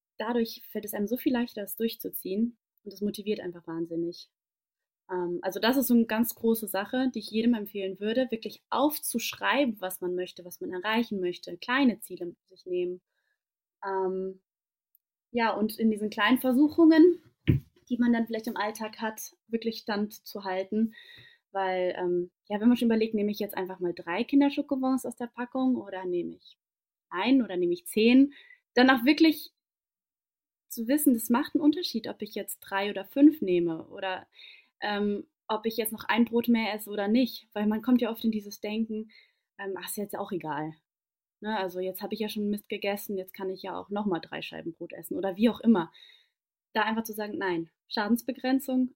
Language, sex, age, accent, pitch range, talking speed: German, female, 20-39, German, 190-245 Hz, 190 wpm